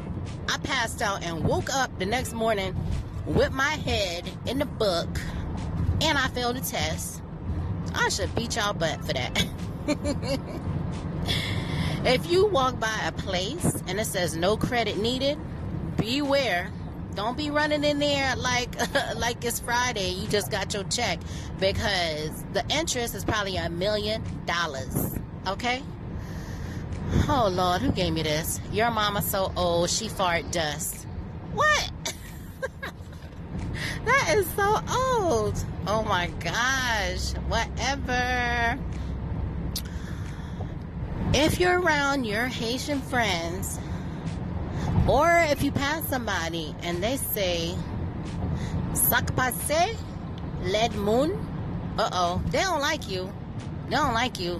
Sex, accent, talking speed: female, American, 125 wpm